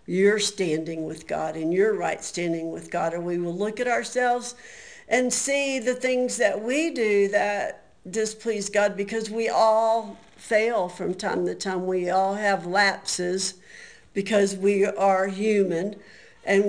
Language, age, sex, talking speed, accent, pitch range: English, 60-79, female, 155 wpm, American, 185-230 Hz